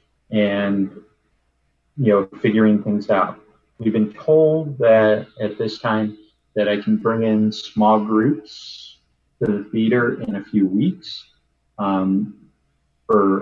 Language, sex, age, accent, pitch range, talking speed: English, male, 30-49, American, 100-110 Hz, 130 wpm